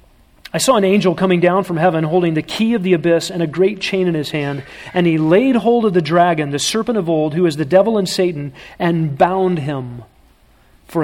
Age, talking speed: 40-59, 230 wpm